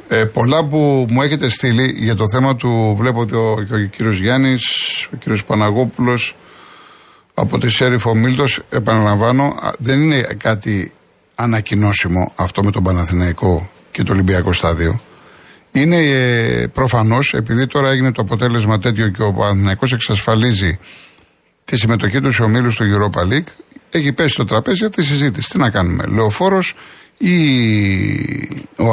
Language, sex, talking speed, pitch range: Greek, male, 145 wpm, 105-140 Hz